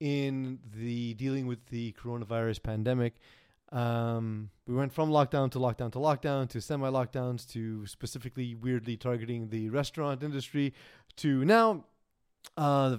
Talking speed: 140 wpm